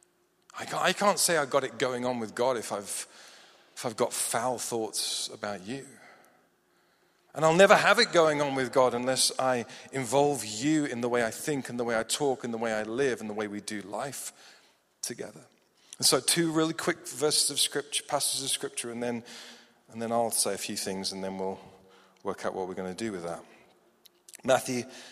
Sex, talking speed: male, 200 wpm